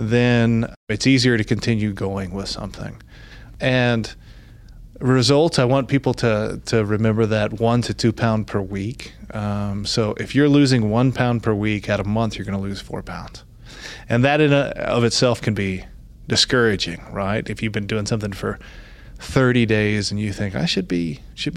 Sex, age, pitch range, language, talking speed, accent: male, 20-39, 105-120 Hz, English, 185 wpm, American